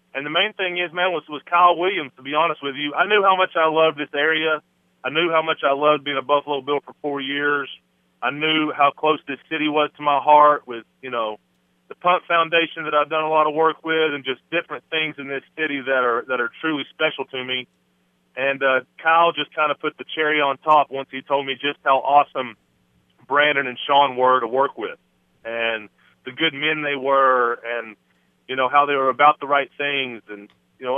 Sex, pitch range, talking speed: male, 125-150 Hz, 230 wpm